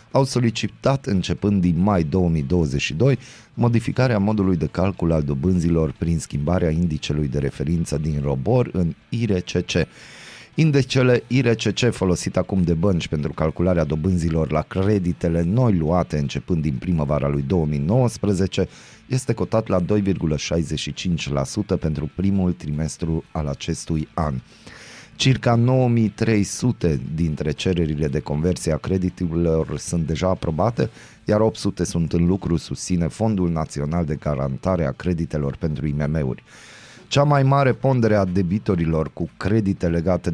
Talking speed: 125 wpm